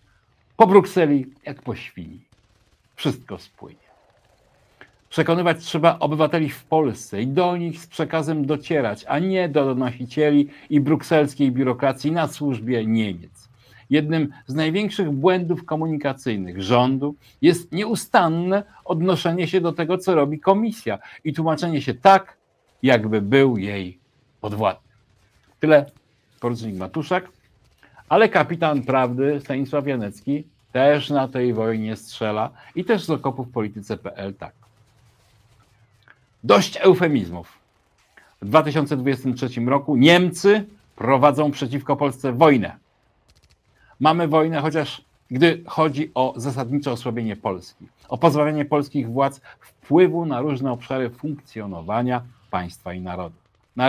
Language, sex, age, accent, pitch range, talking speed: Polish, male, 50-69, native, 120-160 Hz, 110 wpm